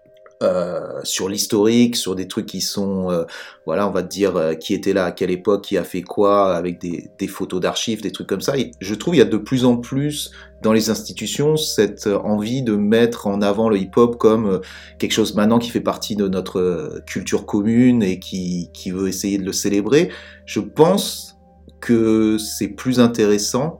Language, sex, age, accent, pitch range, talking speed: French, male, 30-49, French, 95-115 Hz, 200 wpm